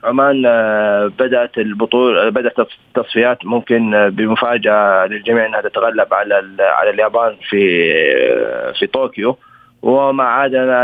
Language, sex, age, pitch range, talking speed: Arabic, male, 30-49, 110-135 Hz, 100 wpm